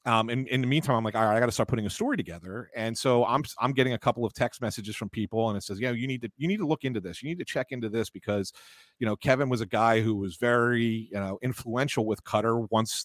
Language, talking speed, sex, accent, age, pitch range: English, 305 wpm, male, American, 40-59, 110-145 Hz